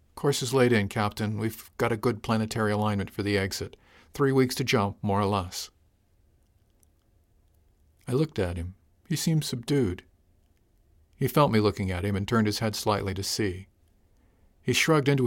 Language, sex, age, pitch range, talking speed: English, male, 50-69, 95-125 Hz, 170 wpm